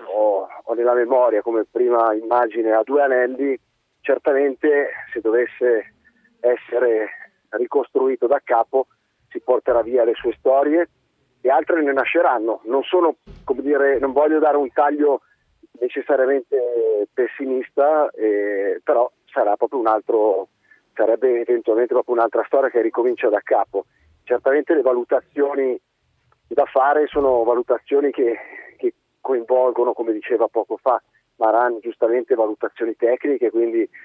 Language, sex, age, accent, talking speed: Italian, male, 40-59, native, 125 wpm